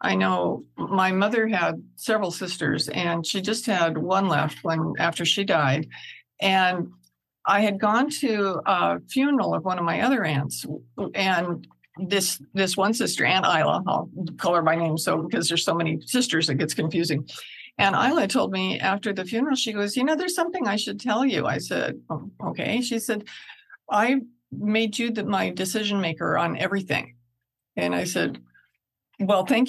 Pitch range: 165-230 Hz